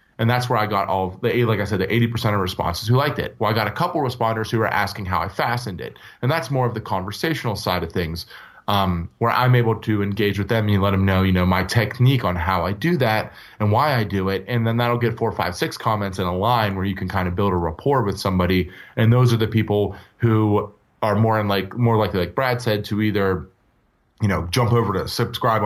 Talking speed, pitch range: 260 wpm, 95-120 Hz